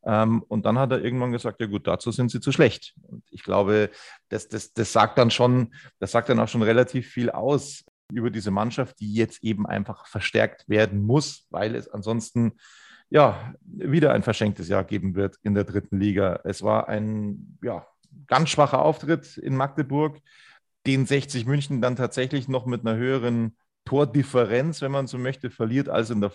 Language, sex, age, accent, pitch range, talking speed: German, male, 30-49, German, 110-145 Hz, 175 wpm